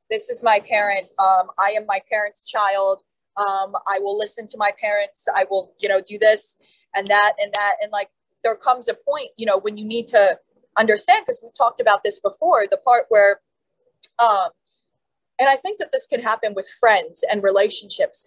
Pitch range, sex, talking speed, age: 205-275 Hz, female, 200 wpm, 20-39